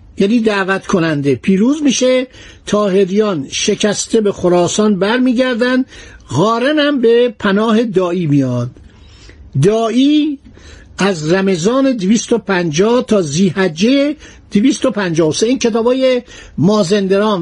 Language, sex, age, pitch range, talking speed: Persian, male, 60-79, 180-235 Hz, 90 wpm